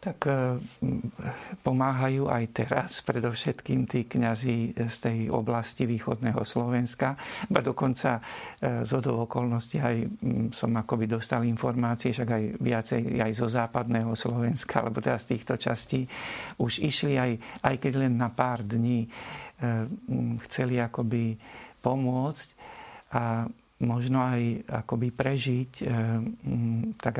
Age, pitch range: 50-69, 115-120 Hz